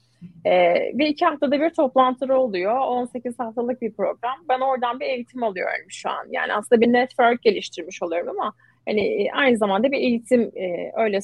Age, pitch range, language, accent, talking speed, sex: 30-49, 205-265 Hz, Turkish, native, 165 wpm, female